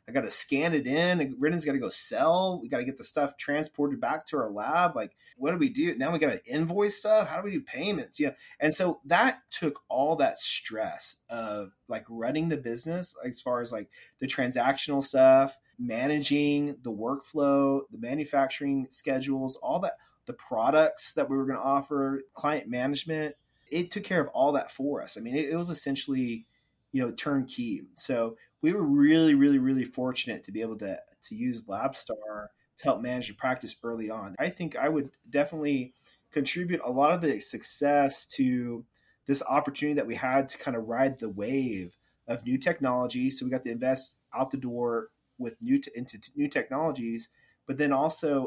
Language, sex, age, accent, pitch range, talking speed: English, male, 30-49, American, 125-155 Hz, 195 wpm